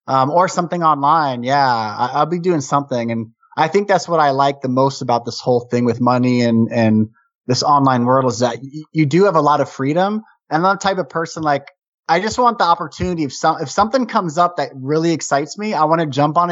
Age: 20-39